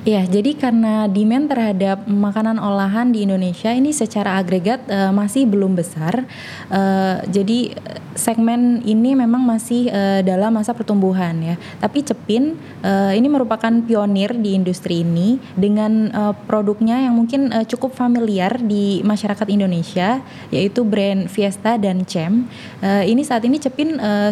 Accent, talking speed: native, 145 wpm